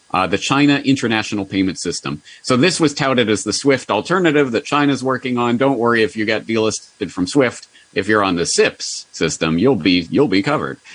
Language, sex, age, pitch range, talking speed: English, male, 30-49, 95-145 Hz, 205 wpm